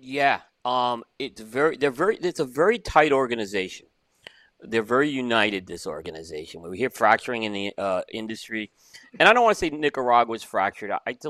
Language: English